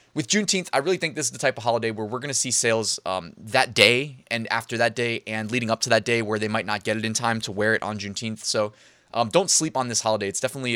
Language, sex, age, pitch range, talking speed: English, male, 20-39, 110-130 Hz, 290 wpm